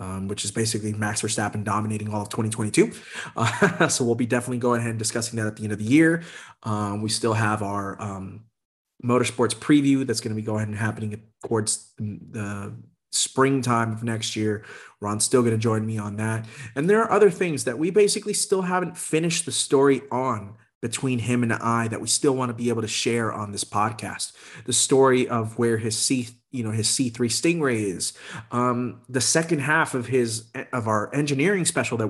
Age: 30-49